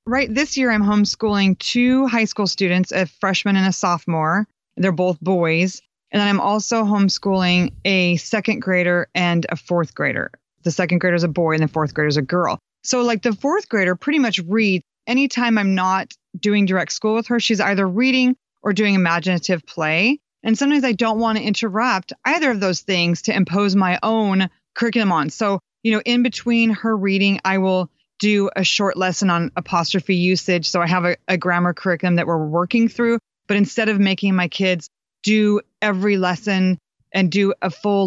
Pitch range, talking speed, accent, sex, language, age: 175-210 Hz, 190 wpm, American, female, English, 30-49